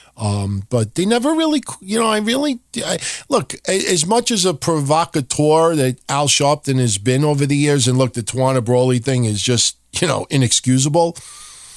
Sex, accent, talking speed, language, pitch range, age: male, American, 180 wpm, English, 125-170 Hz, 50-69